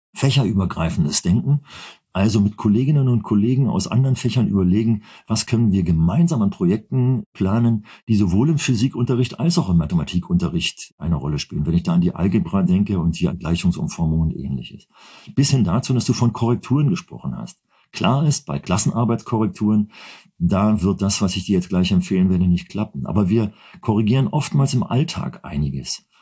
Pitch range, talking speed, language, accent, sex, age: 90-130 Hz, 165 wpm, German, German, male, 50-69